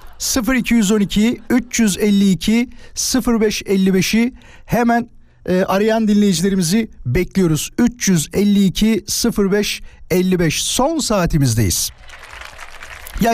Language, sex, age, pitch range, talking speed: Turkish, male, 50-69, 130-205 Hz, 55 wpm